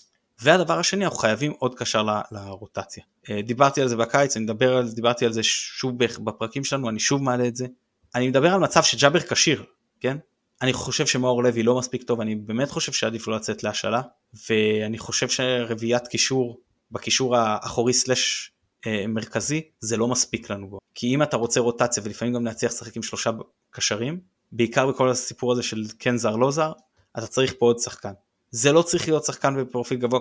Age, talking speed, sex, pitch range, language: 20-39, 185 wpm, male, 115-130 Hz, Hebrew